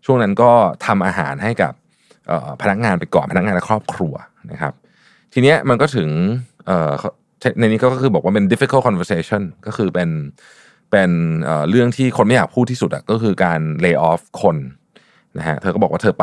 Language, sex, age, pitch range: Thai, male, 20-39, 85-120 Hz